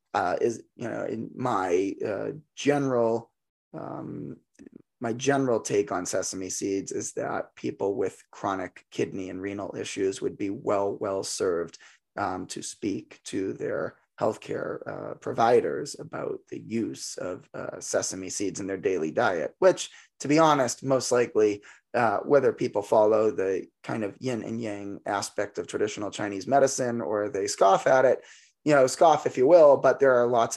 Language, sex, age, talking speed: English, male, 20-39, 165 wpm